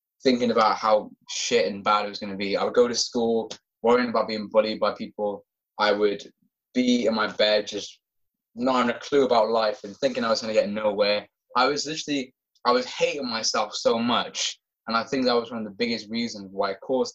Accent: British